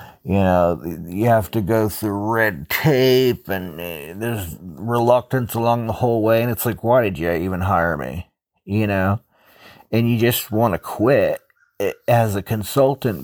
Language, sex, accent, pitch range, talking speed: English, male, American, 105-130 Hz, 165 wpm